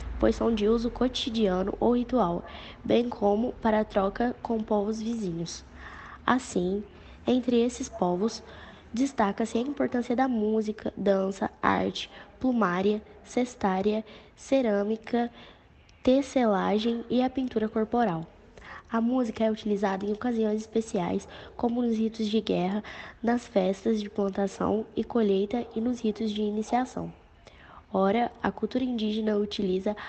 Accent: Brazilian